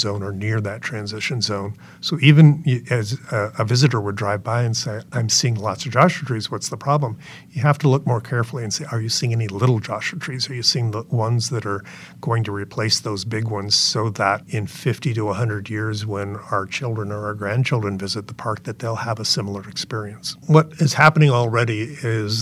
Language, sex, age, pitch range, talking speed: English, male, 50-69, 105-130 Hz, 215 wpm